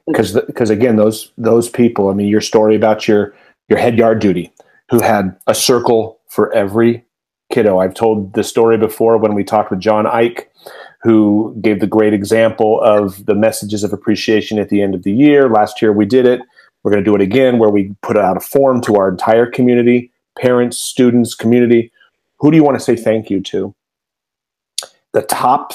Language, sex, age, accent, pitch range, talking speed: English, male, 40-59, American, 105-125 Hz, 195 wpm